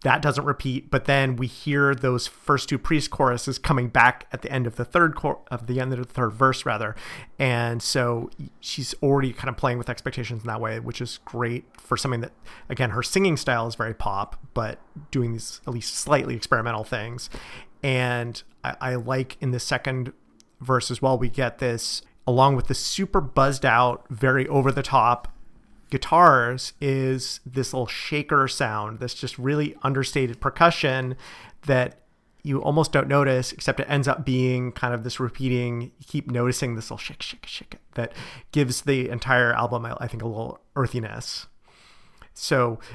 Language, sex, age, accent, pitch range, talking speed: English, male, 30-49, American, 120-135 Hz, 180 wpm